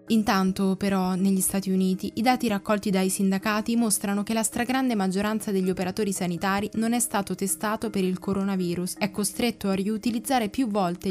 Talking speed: 170 wpm